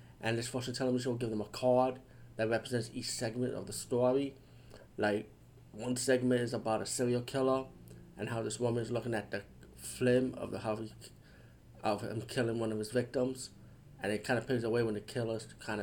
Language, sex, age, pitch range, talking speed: English, male, 30-49, 105-125 Hz, 195 wpm